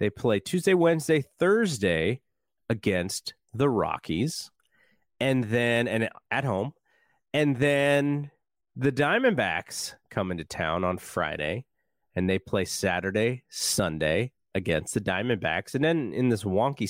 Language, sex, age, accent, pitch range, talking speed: English, male, 30-49, American, 105-145 Hz, 120 wpm